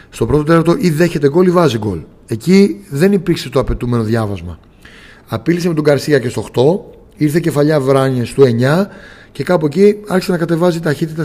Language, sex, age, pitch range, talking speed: Greek, male, 30-49, 120-165 Hz, 180 wpm